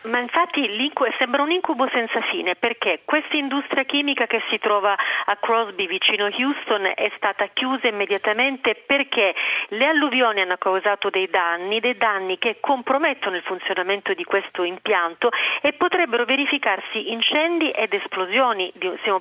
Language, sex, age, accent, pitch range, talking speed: Italian, female, 40-59, native, 200-250 Hz, 145 wpm